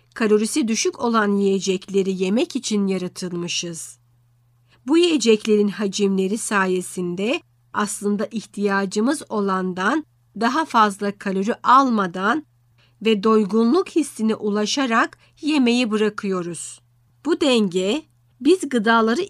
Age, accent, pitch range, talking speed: 50-69, native, 190-235 Hz, 85 wpm